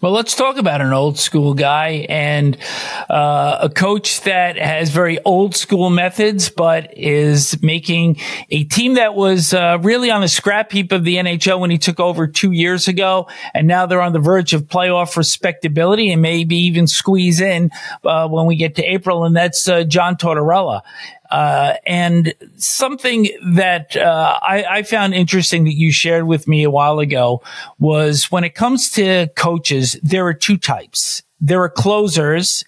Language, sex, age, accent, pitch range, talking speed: English, male, 50-69, American, 150-190 Hz, 175 wpm